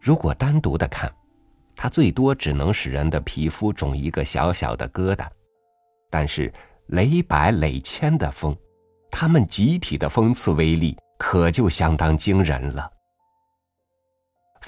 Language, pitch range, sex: Chinese, 80-120 Hz, male